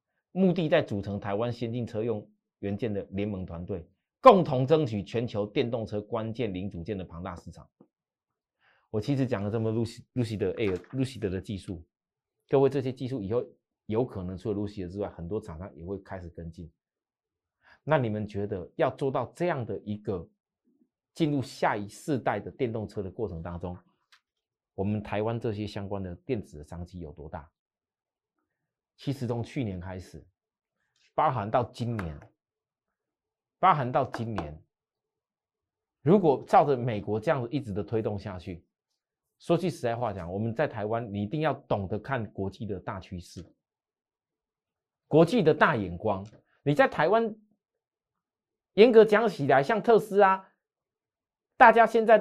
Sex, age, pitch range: male, 30-49, 100-150 Hz